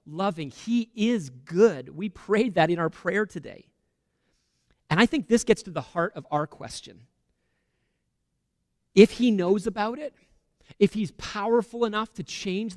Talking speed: 155 wpm